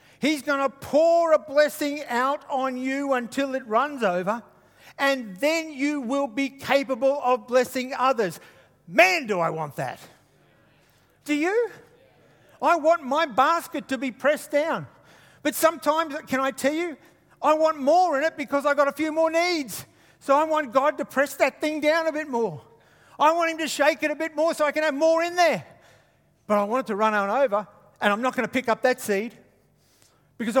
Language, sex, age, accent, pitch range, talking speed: English, male, 50-69, Australian, 205-300 Hz, 200 wpm